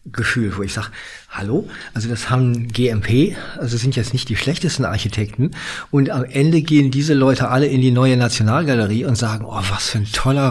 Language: German